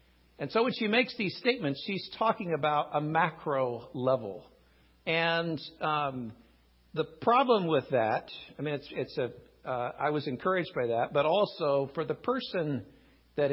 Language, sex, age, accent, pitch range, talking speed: English, male, 60-79, American, 120-165 Hz, 145 wpm